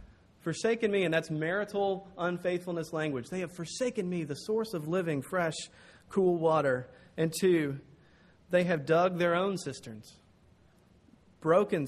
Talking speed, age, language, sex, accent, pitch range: 135 wpm, 30-49, English, male, American, 140-180 Hz